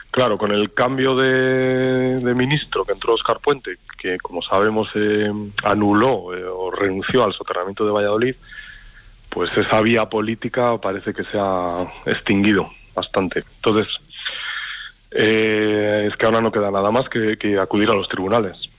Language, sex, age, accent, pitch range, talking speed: Spanish, male, 30-49, Spanish, 105-120 Hz, 155 wpm